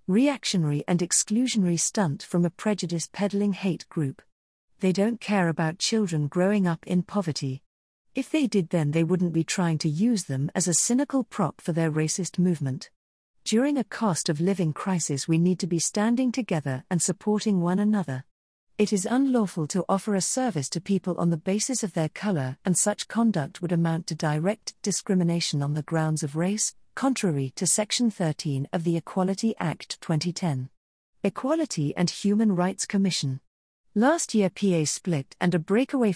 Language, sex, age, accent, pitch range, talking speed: English, female, 50-69, British, 165-215 Hz, 165 wpm